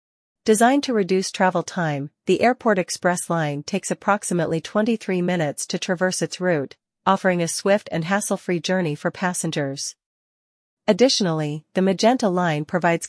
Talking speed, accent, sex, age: 140 wpm, American, female, 40-59